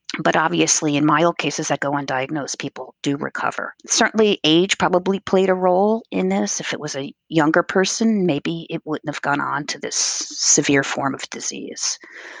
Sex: female